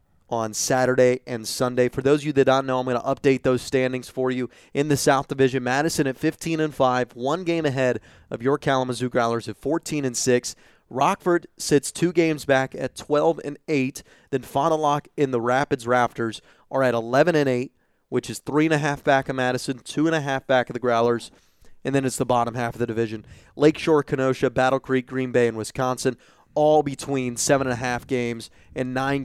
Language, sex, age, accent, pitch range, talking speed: English, male, 30-49, American, 125-150 Hz, 210 wpm